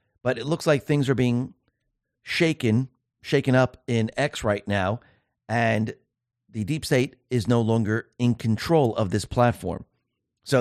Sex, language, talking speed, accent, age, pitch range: male, English, 155 wpm, American, 40-59, 110-140 Hz